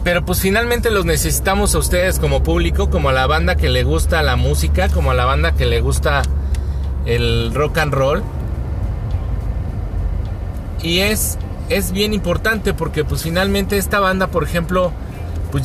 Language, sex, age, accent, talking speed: Spanish, male, 40-59, Mexican, 160 wpm